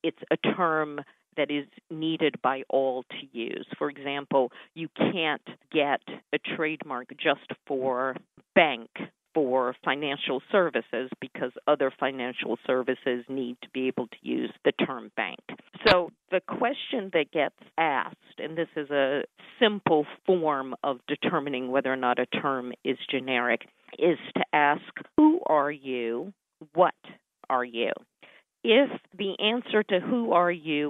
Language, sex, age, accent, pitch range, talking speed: English, female, 50-69, American, 140-190 Hz, 140 wpm